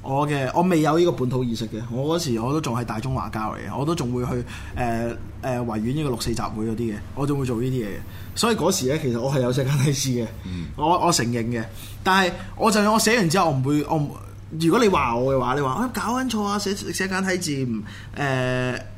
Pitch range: 120-170 Hz